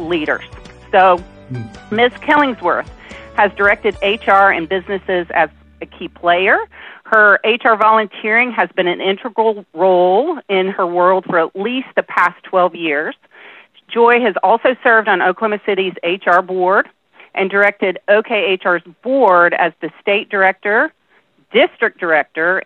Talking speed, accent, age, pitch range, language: 130 wpm, American, 40-59, 185-250 Hz, English